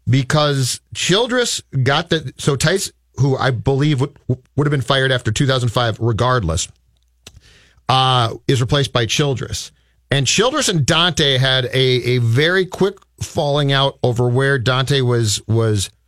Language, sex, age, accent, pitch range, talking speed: English, male, 40-59, American, 115-155 Hz, 140 wpm